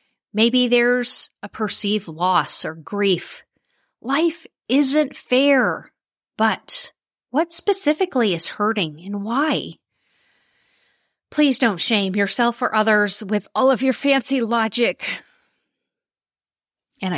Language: English